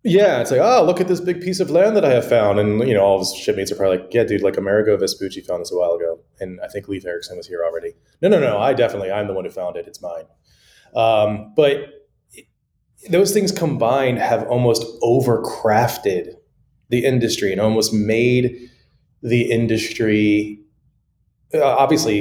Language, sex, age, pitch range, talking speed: English, male, 20-39, 105-140 Hz, 195 wpm